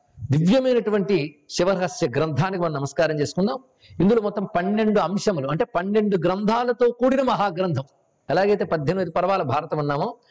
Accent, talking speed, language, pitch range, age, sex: native, 115 wpm, Telugu, 145-205 Hz, 50-69, male